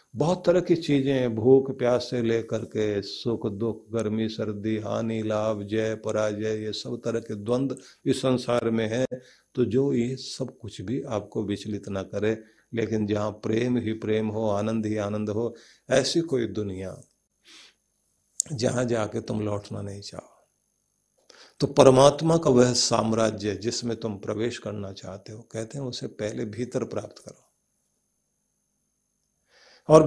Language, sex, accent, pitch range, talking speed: Hindi, male, native, 105-135 Hz, 150 wpm